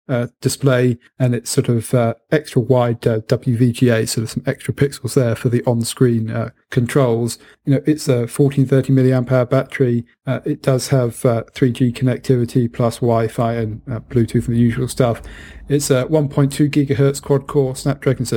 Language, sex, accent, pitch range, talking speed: English, male, British, 120-140 Hz, 175 wpm